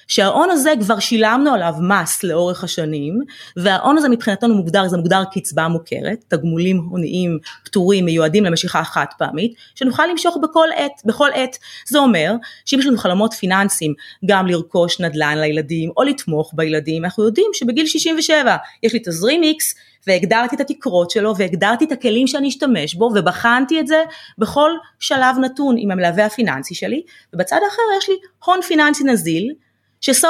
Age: 30-49